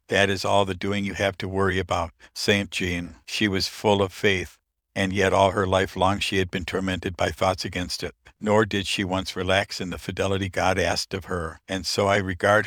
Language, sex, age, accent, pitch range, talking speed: English, male, 60-79, American, 90-100 Hz, 225 wpm